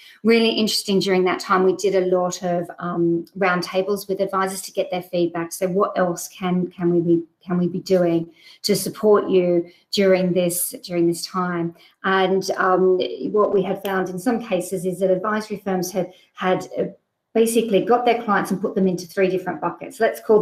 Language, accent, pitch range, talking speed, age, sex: English, Australian, 180-200 Hz, 190 wpm, 40-59, female